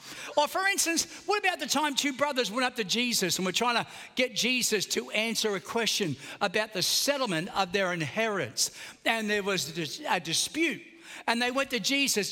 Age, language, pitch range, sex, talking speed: 60-79, English, 190-265 Hz, male, 190 wpm